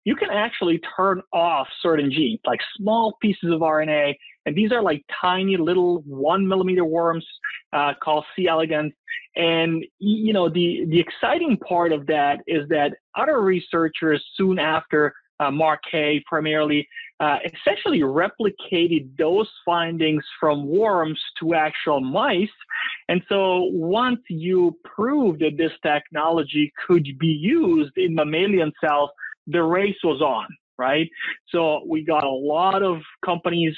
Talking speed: 140 wpm